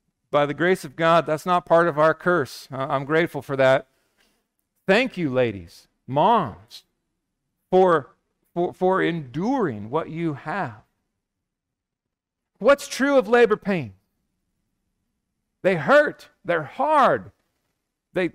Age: 50-69